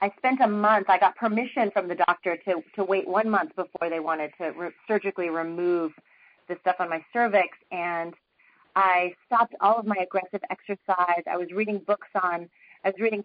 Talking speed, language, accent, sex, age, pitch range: 195 wpm, English, American, female, 30-49, 175-225 Hz